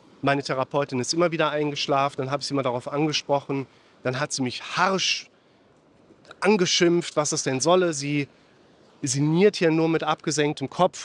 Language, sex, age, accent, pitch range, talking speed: German, male, 40-59, German, 140-170 Hz, 165 wpm